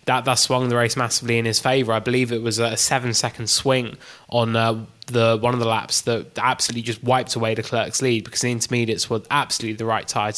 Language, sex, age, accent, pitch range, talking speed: English, male, 20-39, British, 115-125 Hz, 230 wpm